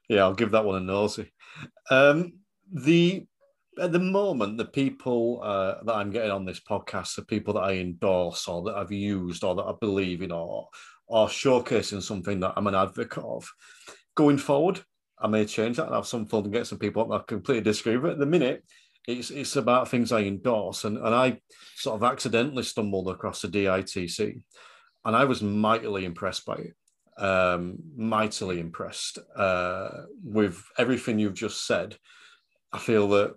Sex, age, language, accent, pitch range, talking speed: male, 40-59, English, British, 95-125 Hz, 180 wpm